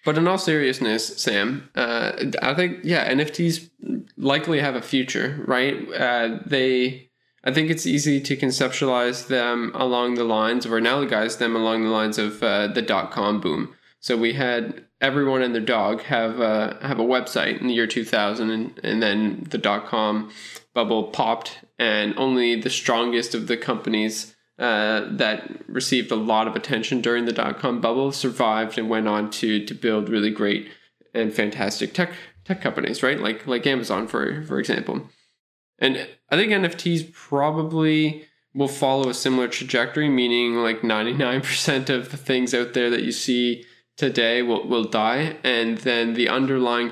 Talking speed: 165 wpm